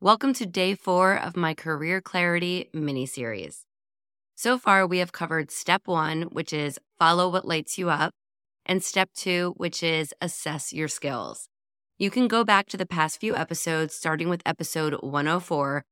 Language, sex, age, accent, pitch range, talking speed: English, female, 20-39, American, 155-190 Hz, 165 wpm